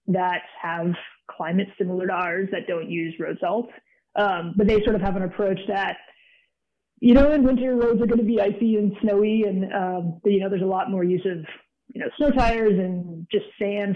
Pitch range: 185-220 Hz